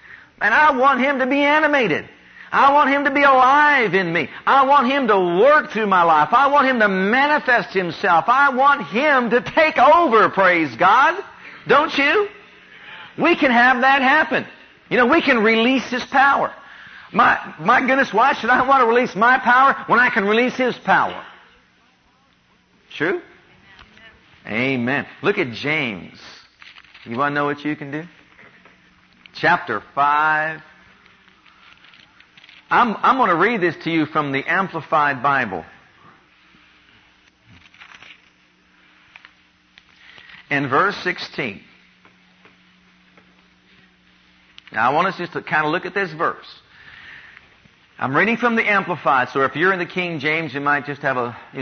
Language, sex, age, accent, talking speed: English, male, 50-69, American, 150 wpm